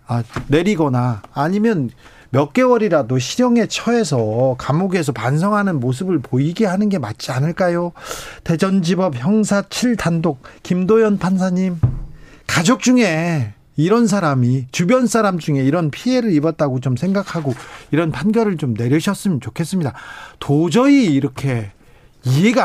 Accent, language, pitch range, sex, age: native, Korean, 135-200 Hz, male, 40-59